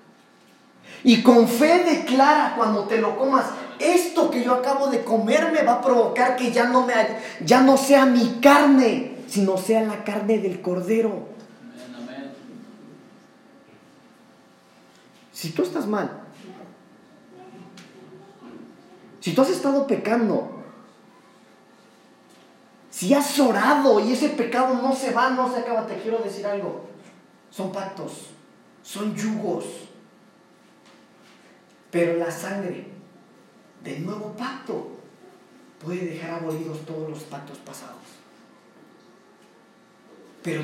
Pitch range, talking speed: 170-255 Hz, 110 wpm